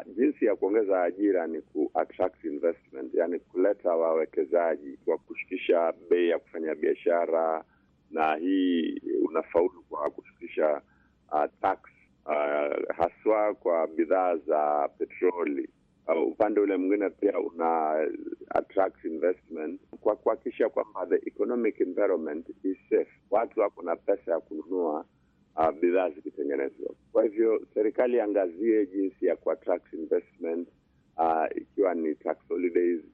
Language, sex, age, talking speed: Swahili, male, 50-69, 120 wpm